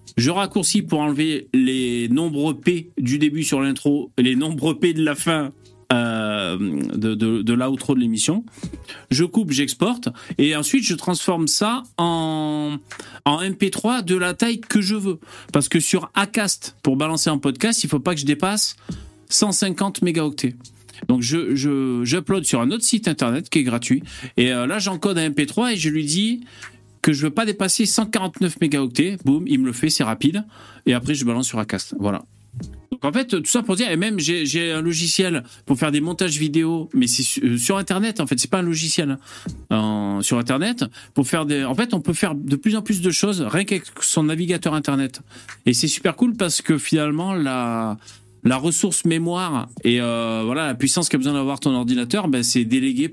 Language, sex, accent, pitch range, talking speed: French, male, French, 125-180 Hz, 200 wpm